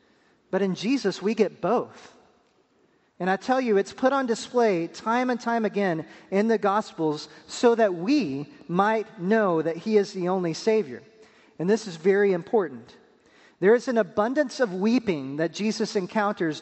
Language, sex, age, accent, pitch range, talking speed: English, male, 40-59, American, 175-220 Hz, 165 wpm